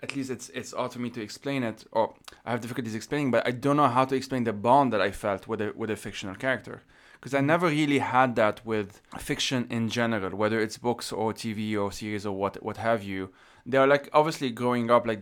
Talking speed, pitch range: 250 wpm, 105-125 Hz